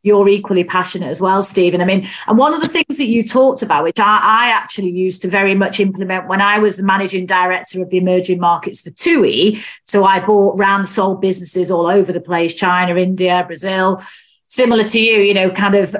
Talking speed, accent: 220 wpm, British